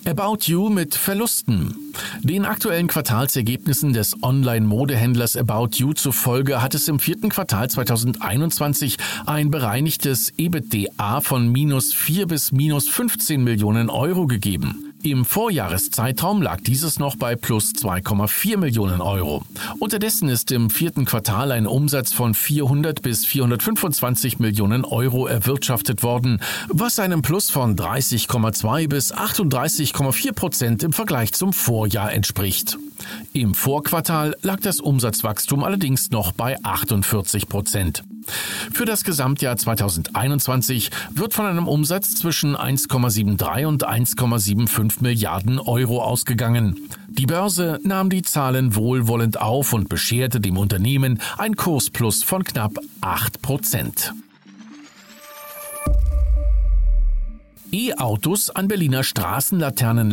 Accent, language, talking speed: German, German, 115 wpm